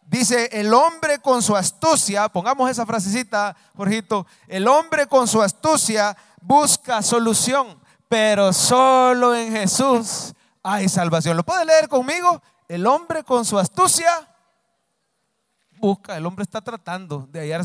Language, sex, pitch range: English, male, 160-225 Hz